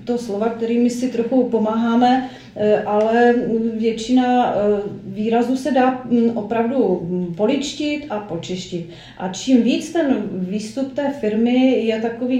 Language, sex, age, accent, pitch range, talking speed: Czech, female, 40-59, native, 210-260 Hz, 115 wpm